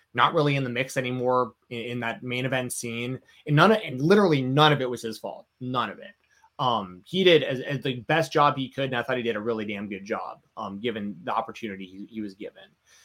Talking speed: 250 wpm